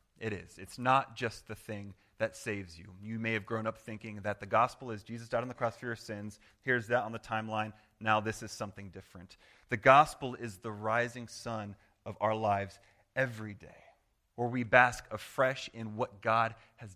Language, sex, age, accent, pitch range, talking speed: English, male, 30-49, American, 105-135 Hz, 200 wpm